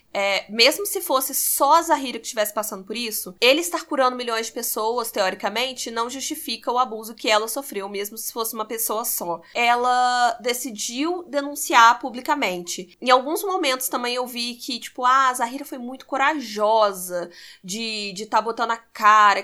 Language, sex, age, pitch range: Portuguese, female, 20-39, 215-255 Hz